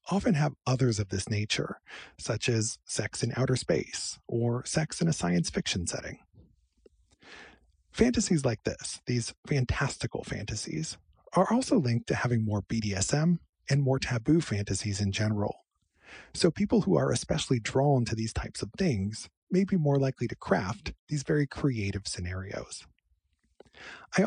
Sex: male